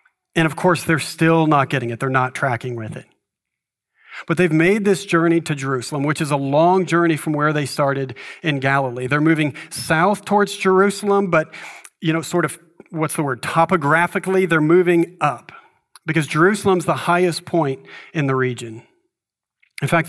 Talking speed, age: 175 wpm, 40-59